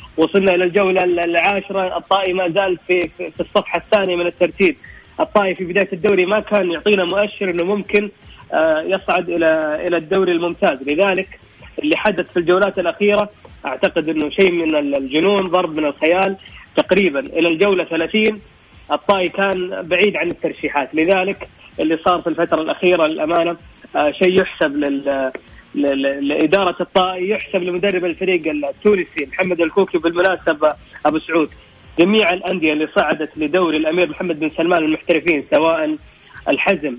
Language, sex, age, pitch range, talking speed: English, female, 30-49, 165-200 Hz, 135 wpm